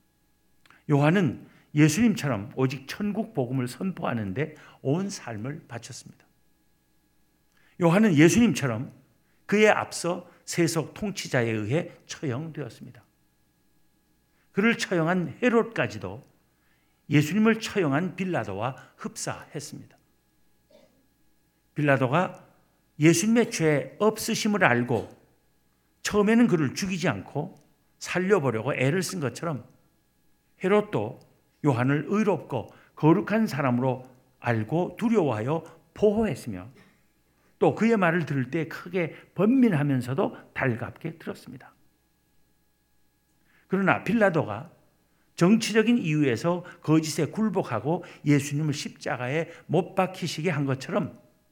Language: Korean